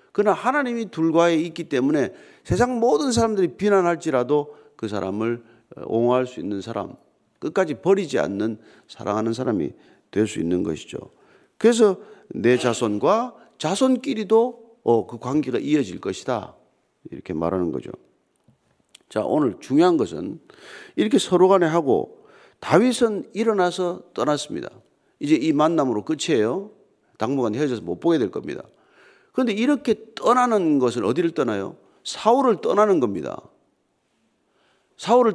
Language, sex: Korean, male